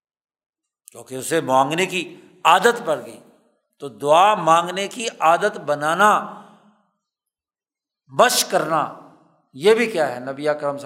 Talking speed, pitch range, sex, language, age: 125 wpm, 165-230 Hz, male, Urdu, 60-79